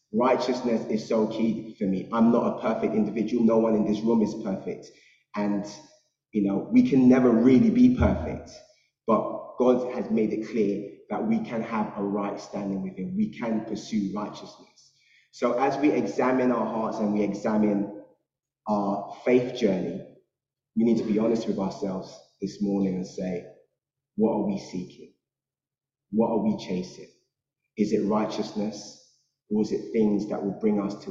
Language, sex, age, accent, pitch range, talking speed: English, male, 20-39, British, 105-120 Hz, 170 wpm